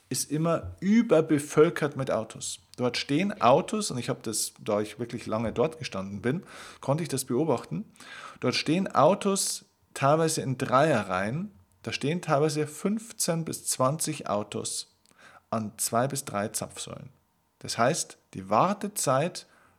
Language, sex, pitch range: German, male, 115-160 Hz